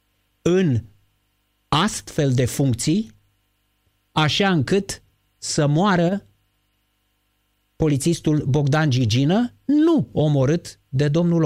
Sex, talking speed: male, 80 wpm